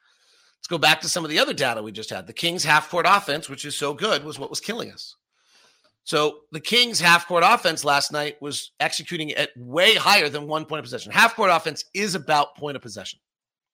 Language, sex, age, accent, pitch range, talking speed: English, male, 40-59, American, 140-180 Hz, 215 wpm